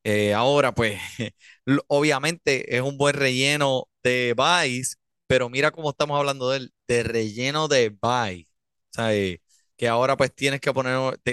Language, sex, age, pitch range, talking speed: Spanish, male, 20-39, 120-155 Hz, 150 wpm